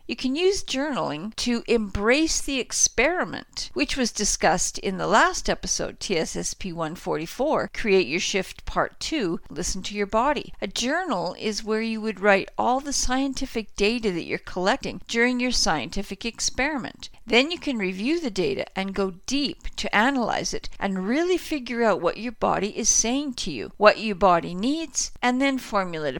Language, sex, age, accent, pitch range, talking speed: English, female, 50-69, American, 190-250 Hz, 170 wpm